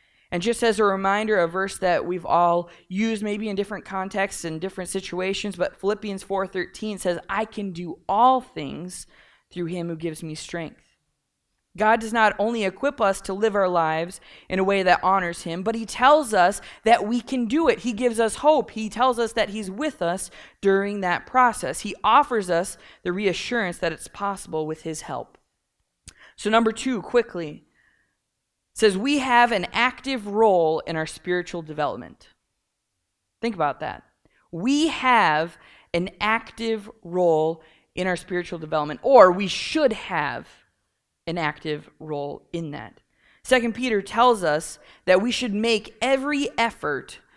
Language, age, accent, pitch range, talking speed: English, 20-39, American, 170-225 Hz, 165 wpm